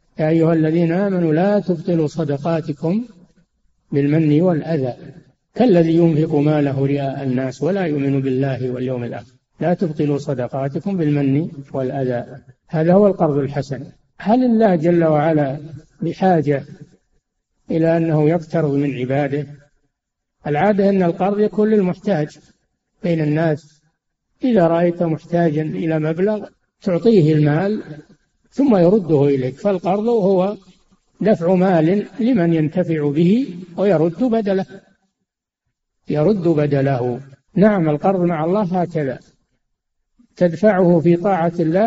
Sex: male